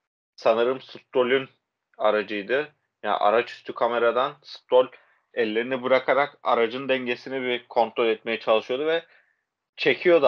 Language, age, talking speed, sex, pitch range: Turkish, 30-49, 110 wpm, male, 115-140 Hz